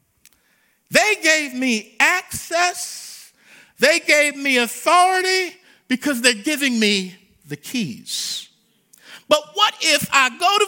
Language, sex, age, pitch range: English, male, 50-69, 185-300 Hz